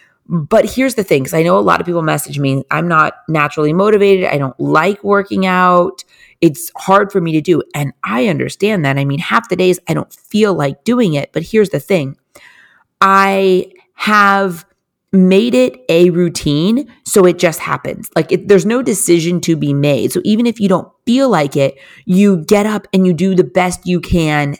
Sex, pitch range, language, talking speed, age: female, 150-195 Hz, English, 200 wpm, 30-49